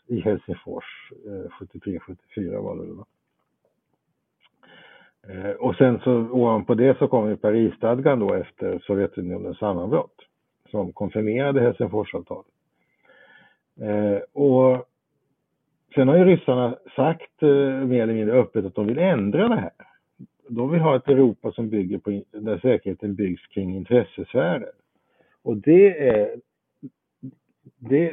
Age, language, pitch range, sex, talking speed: 60-79, Swedish, 100-130 Hz, male, 125 wpm